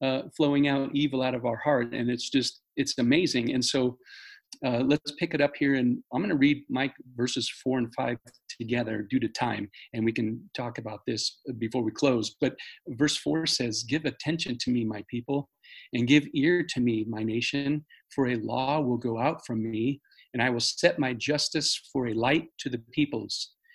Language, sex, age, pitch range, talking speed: English, male, 40-59, 120-145 Hz, 200 wpm